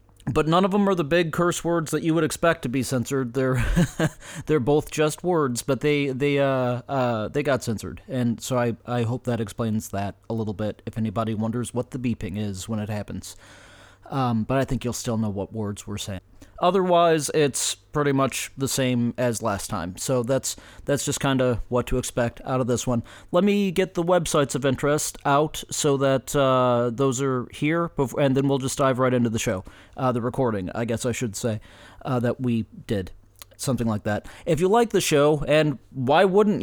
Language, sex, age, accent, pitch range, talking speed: English, male, 30-49, American, 115-145 Hz, 215 wpm